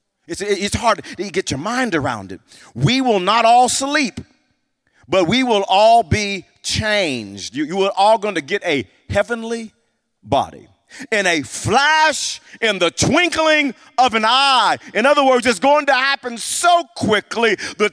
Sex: male